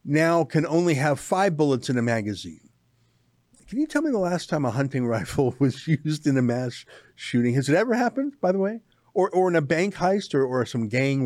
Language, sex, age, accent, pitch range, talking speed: English, male, 50-69, American, 125-170 Hz, 225 wpm